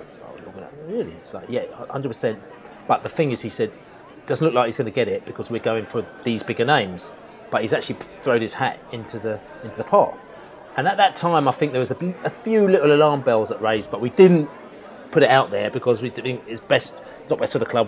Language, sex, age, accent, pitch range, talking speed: English, male, 30-49, British, 115-160 Hz, 245 wpm